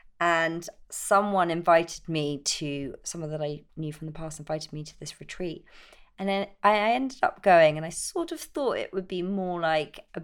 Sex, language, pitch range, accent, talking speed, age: female, English, 150-185 Hz, British, 200 wpm, 30-49